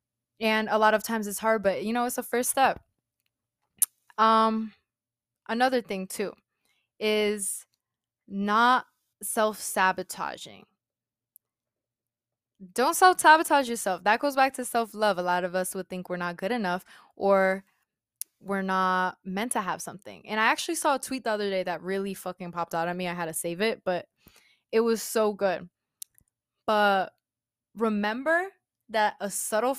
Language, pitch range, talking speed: English, 180-225 Hz, 155 wpm